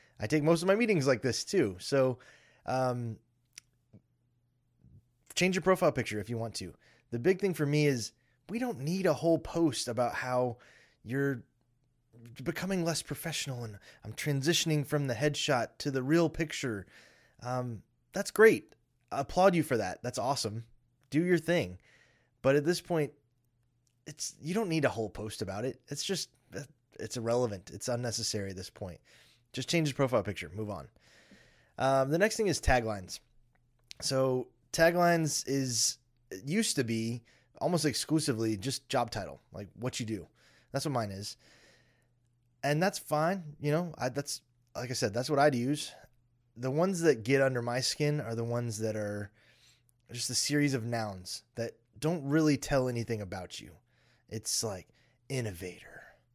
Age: 20-39